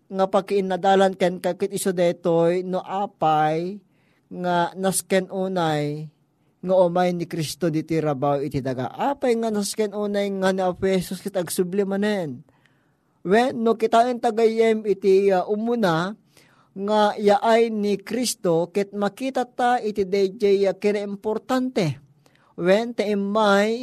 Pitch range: 175-220 Hz